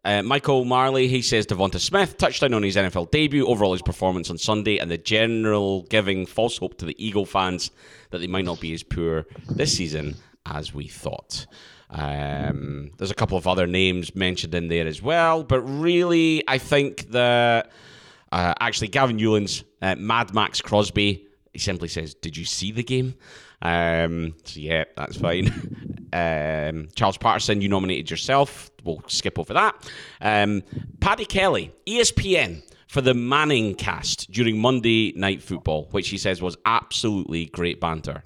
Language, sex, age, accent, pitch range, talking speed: English, male, 30-49, British, 85-115 Hz, 170 wpm